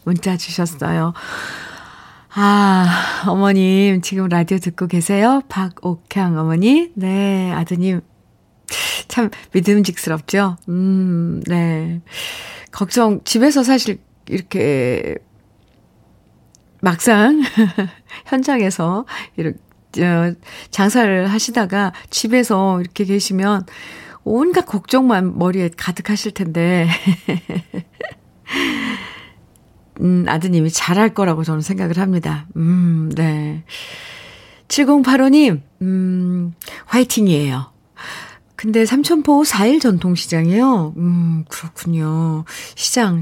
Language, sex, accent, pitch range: Korean, female, native, 170-210 Hz